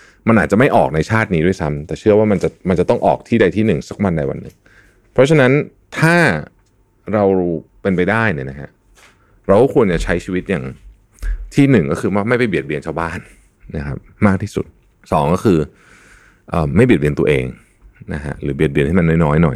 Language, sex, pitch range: Thai, male, 75-105 Hz